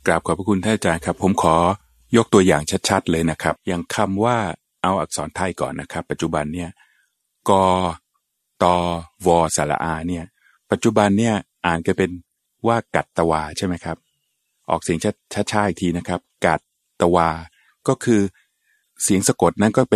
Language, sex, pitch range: Thai, male, 85-105 Hz